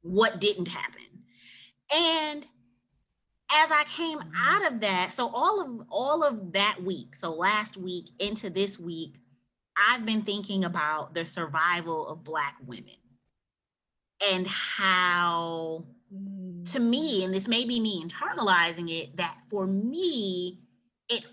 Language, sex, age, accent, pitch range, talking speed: English, female, 30-49, American, 165-225 Hz, 130 wpm